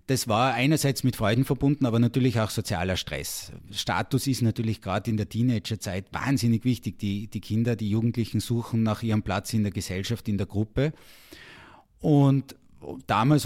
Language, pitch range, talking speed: German, 110-130 Hz, 165 wpm